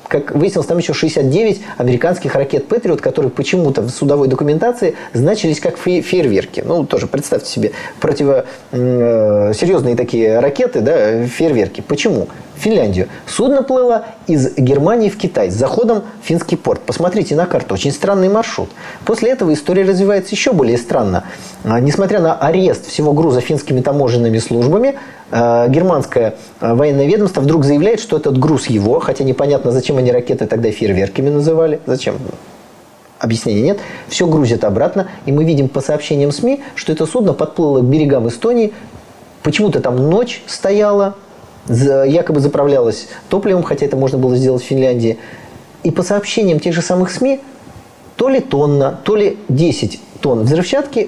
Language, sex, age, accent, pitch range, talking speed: Russian, male, 30-49, native, 130-200 Hz, 145 wpm